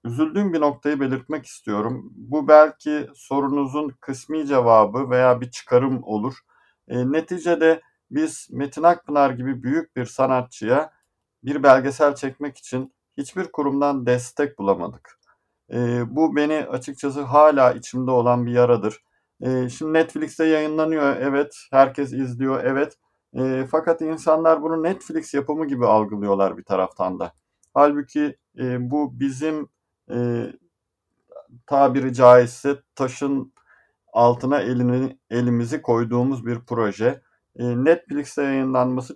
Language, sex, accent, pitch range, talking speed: Turkish, male, native, 125-150 Hz, 115 wpm